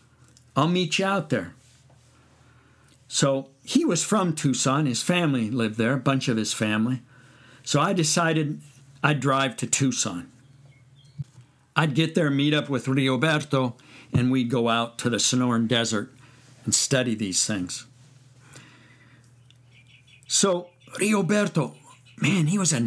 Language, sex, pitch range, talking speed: English, male, 125-150 Hz, 135 wpm